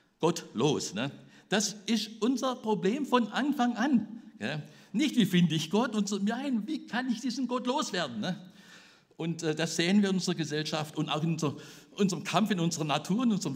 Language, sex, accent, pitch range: German, male, German, 150-215 Hz